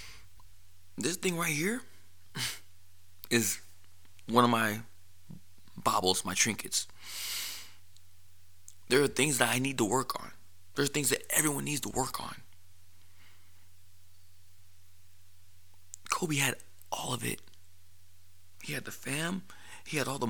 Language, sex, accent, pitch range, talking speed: English, male, American, 90-110 Hz, 125 wpm